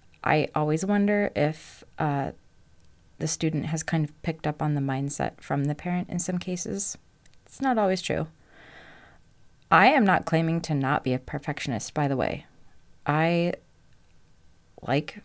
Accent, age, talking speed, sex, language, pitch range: American, 30-49, 155 wpm, female, English, 150-185 Hz